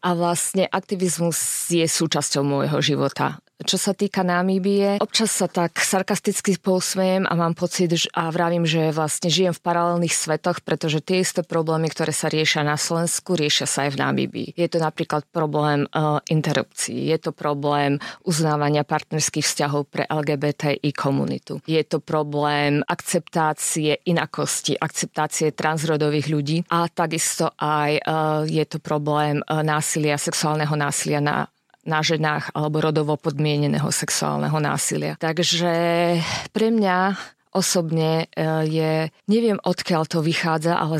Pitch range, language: 150-175 Hz, Slovak